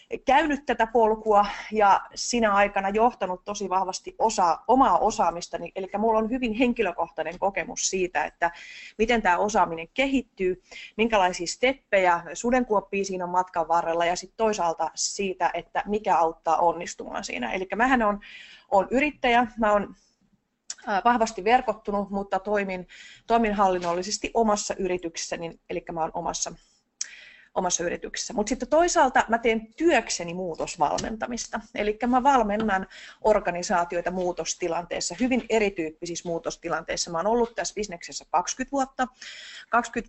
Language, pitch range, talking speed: Finnish, 180-230 Hz, 125 wpm